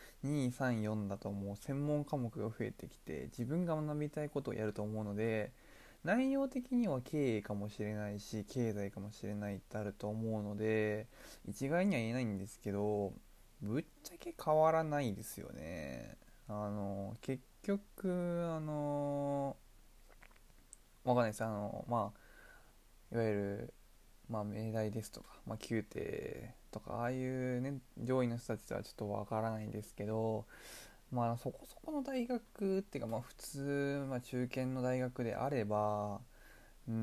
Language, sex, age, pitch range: Japanese, male, 20-39, 105-140 Hz